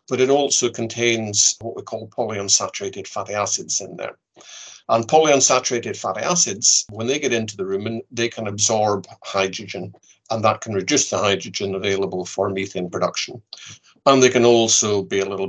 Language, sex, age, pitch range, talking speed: English, male, 50-69, 100-120 Hz, 165 wpm